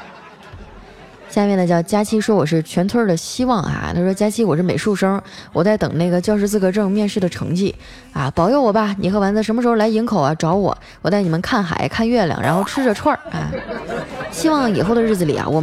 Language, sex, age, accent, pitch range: Chinese, female, 20-39, native, 170-230 Hz